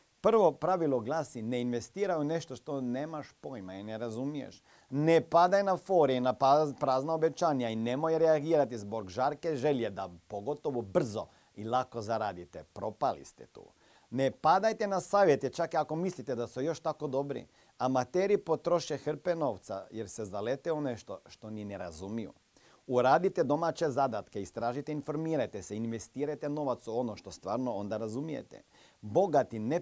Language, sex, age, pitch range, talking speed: Croatian, male, 40-59, 115-155 Hz, 155 wpm